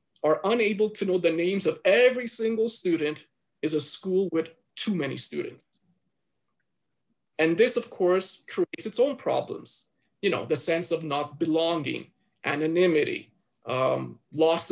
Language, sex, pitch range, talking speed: English, male, 160-230 Hz, 145 wpm